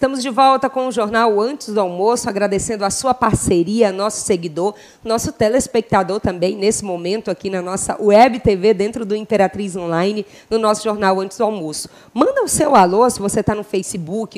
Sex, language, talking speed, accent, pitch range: female, Portuguese, 185 wpm, Brazilian, 195-260 Hz